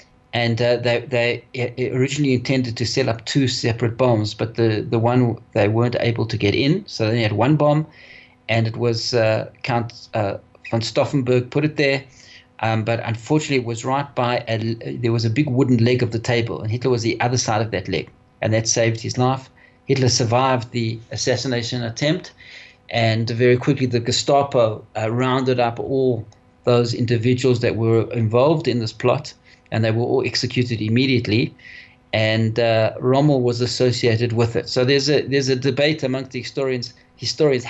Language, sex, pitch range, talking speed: English, male, 115-135 Hz, 180 wpm